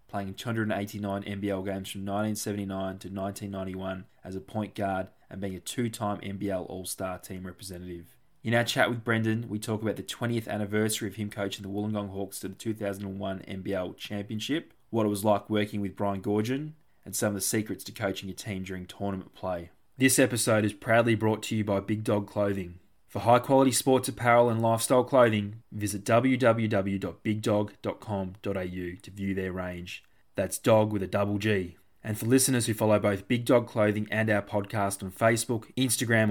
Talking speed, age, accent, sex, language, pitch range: 180 wpm, 20-39, Australian, male, English, 100-115 Hz